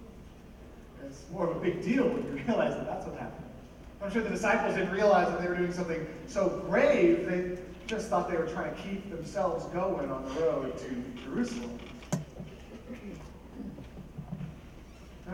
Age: 30-49